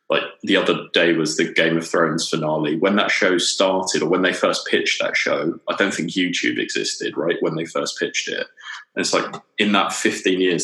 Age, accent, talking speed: 20-39, British, 220 wpm